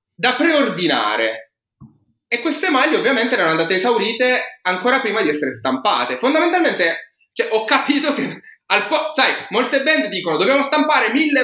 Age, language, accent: 20-39, Italian, native